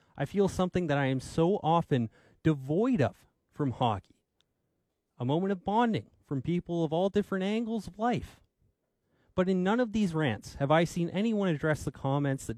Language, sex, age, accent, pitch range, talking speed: English, male, 30-49, American, 125-180 Hz, 180 wpm